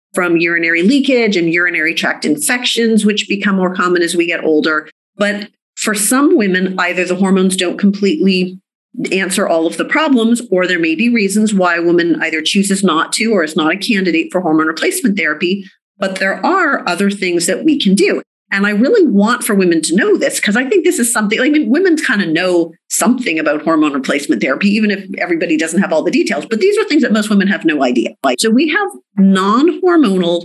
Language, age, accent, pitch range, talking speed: English, 40-59, American, 175-230 Hz, 210 wpm